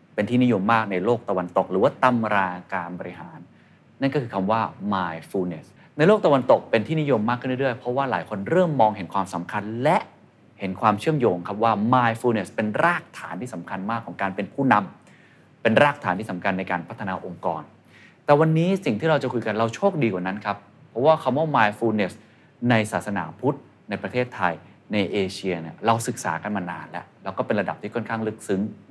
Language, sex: Thai, male